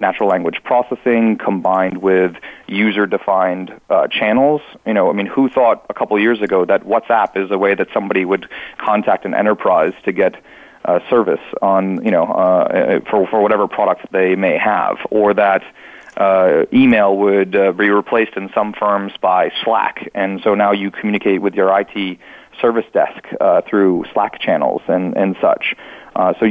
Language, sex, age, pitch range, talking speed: English, male, 30-49, 95-110 Hz, 175 wpm